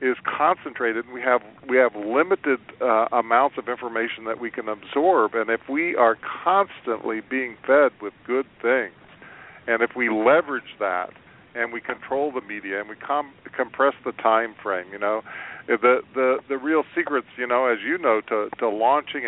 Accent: American